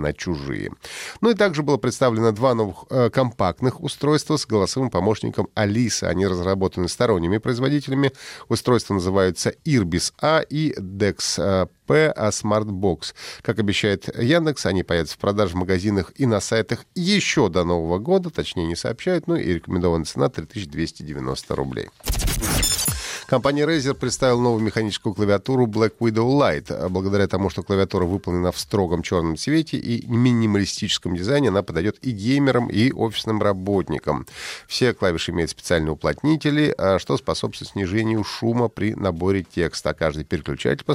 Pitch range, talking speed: 90-125 Hz, 140 wpm